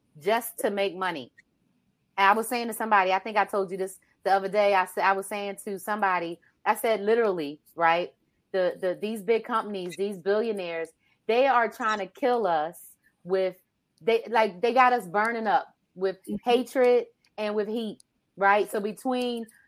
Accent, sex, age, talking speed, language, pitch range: American, female, 30-49, 175 wpm, English, 190-230 Hz